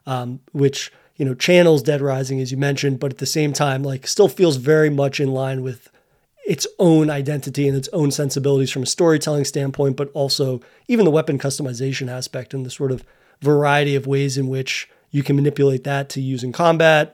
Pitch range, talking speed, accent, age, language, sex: 135-155 Hz, 205 wpm, American, 30-49, English, male